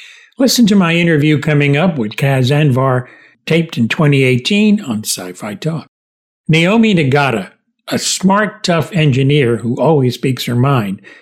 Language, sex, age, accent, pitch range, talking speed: English, male, 60-79, American, 135-185 Hz, 140 wpm